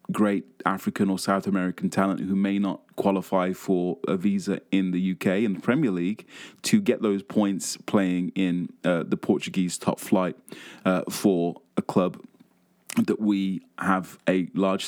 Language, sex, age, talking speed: English, male, 20-39, 160 wpm